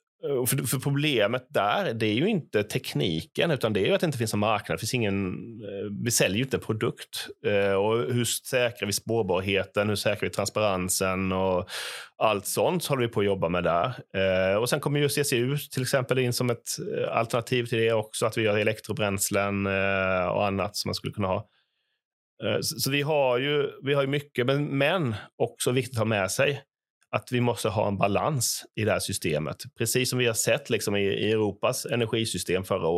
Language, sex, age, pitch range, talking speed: Swedish, male, 30-49, 95-125 Hz, 190 wpm